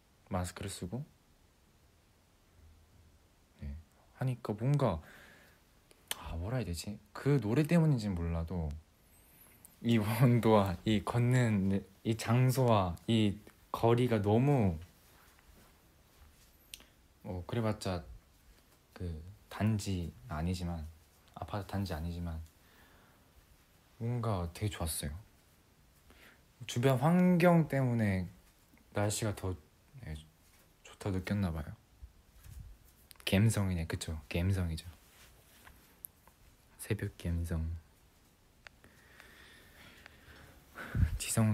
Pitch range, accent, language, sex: 80-105 Hz, native, Korean, male